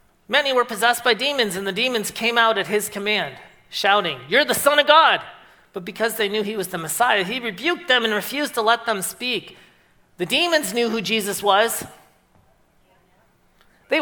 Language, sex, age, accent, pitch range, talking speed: English, male, 40-59, American, 160-250 Hz, 185 wpm